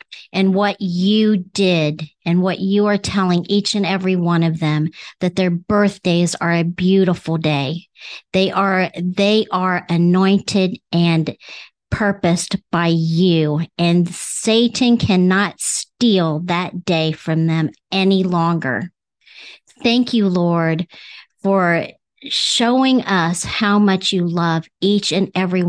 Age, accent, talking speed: 50-69, American, 125 wpm